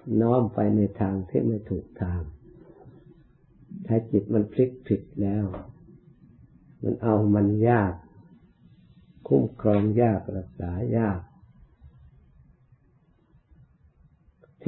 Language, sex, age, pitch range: Thai, male, 60-79, 95-120 Hz